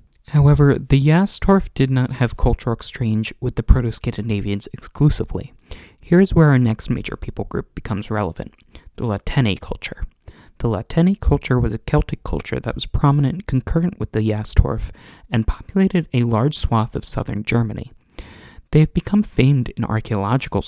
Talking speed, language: 155 wpm, English